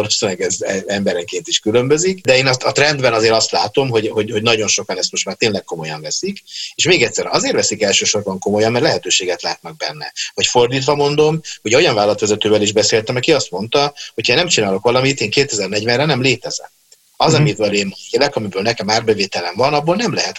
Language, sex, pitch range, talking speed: Hungarian, male, 110-160 Hz, 195 wpm